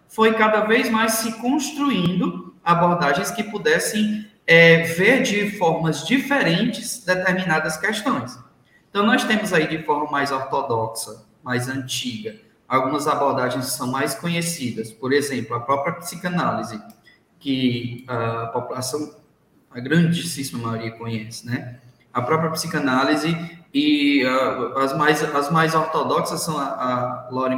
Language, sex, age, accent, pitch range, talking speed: Portuguese, male, 20-39, Brazilian, 130-185 Hz, 130 wpm